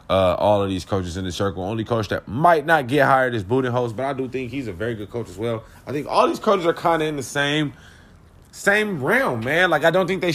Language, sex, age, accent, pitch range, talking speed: English, male, 20-39, American, 105-140 Hz, 280 wpm